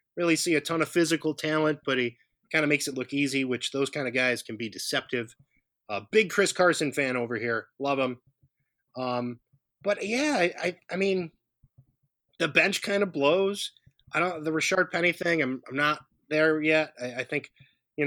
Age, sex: 20-39, male